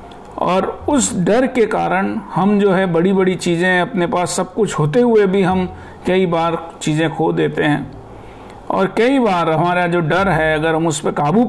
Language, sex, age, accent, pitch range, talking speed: Hindi, male, 50-69, native, 160-215 Hz, 195 wpm